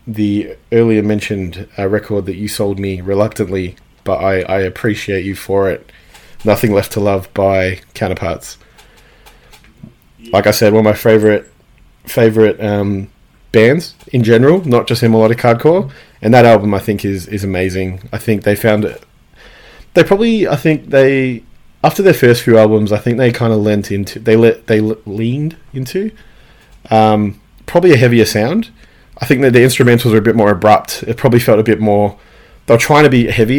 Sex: male